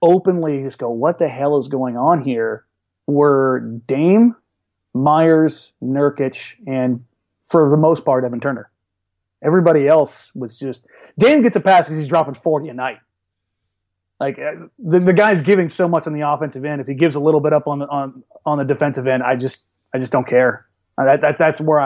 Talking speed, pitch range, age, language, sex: 190 wpm, 120-165 Hz, 30-49, English, male